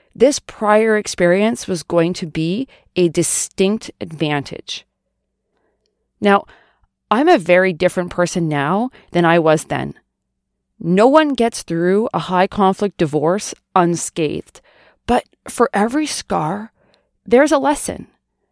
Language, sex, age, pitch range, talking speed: English, female, 30-49, 170-220 Hz, 115 wpm